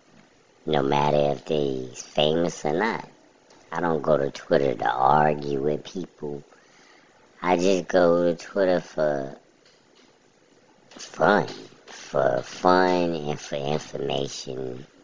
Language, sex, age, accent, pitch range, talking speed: English, male, 30-49, American, 70-80 Hz, 110 wpm